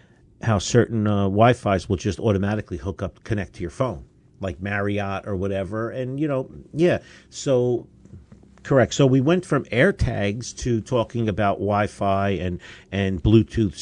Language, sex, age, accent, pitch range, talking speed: English, male, 50-69, American, 95-120 Hz, 155 wpm